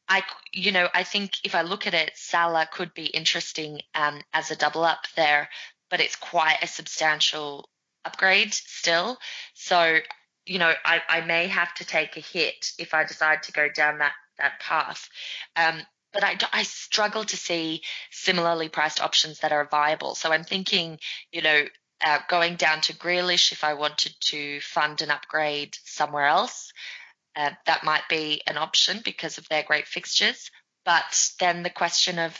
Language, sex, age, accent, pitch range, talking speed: English, female, 20-39, Australian, 155-175 Hz, 175 wpm